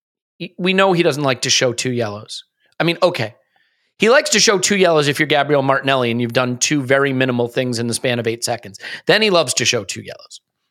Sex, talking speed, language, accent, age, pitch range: male, 235 wpm, English, American, 40-59, 125-170 Hz